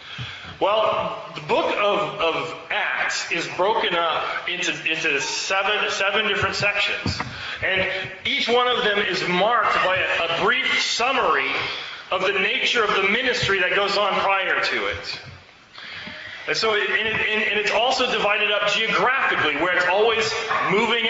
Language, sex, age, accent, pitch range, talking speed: English, male, 30-49, American, 210-265 Hz, 140 wpm